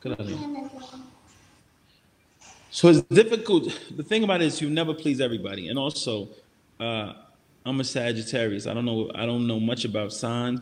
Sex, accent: male, American